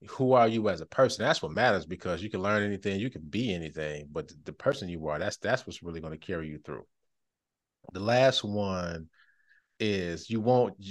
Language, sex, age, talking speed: English, male, 30-49, 215 wpm